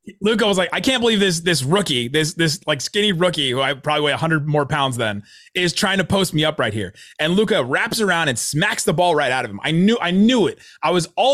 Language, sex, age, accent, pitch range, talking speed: English, male, 30-49, American, 135-185 Hz, 270 wpm